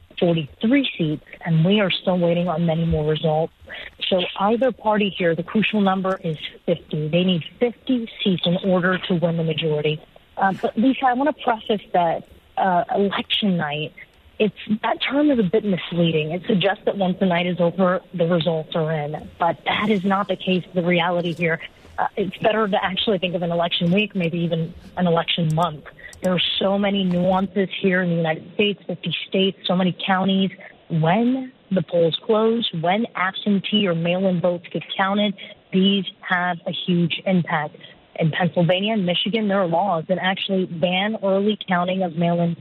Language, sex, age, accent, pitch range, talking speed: English, female, 30-49, American, 170-205 Hz, 180 wpm